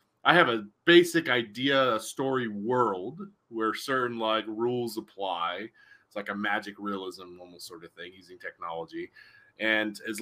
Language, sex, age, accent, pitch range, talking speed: English, male, 30-49, American, 110-135 Hz, 155 wpm